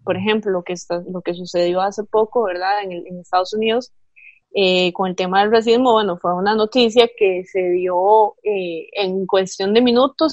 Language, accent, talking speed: Spanish, Colombian, 200 wpm